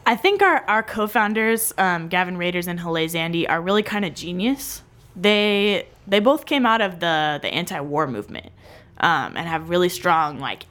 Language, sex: English, female